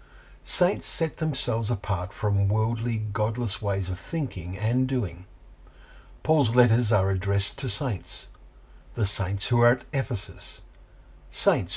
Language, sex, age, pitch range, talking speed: English, male, 60-79, 95-125 Hz, 125 wpm